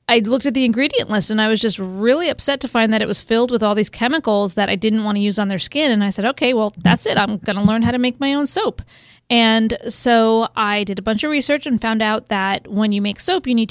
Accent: American